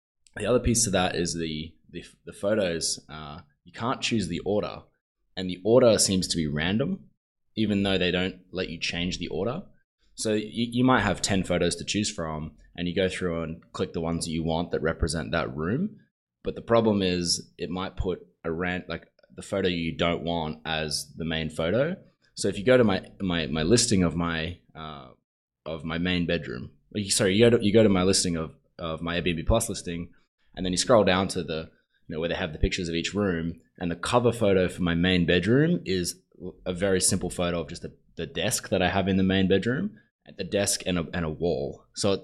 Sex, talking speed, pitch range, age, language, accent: male, 225 wpm, 85-100 Hz, 20-39, English, Australian